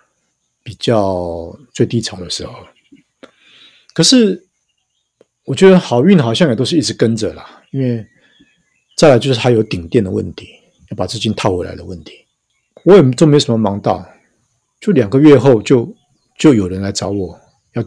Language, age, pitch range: Chinese, 50-69, 100-135 Hz